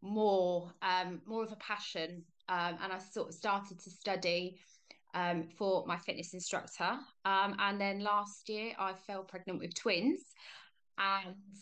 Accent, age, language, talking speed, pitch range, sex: British, 20-39, English, 155 wpm, 185-220 Hz, female